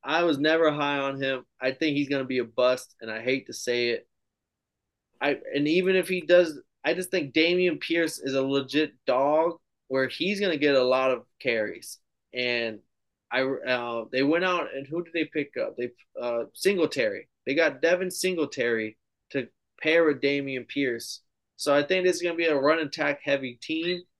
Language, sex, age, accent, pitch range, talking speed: English, male, 20-39, American, 130-165 Hz, 195 wpm